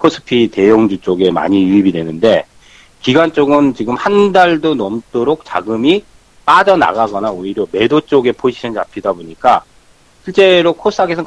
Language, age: Korean, 40-59